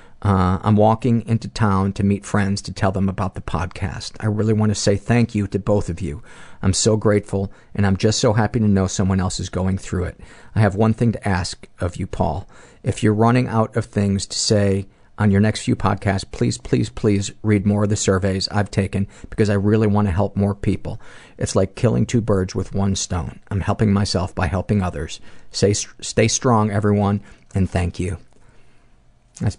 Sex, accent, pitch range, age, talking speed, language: male, American, 95-105 Hz, 50-69, 205 wpm, English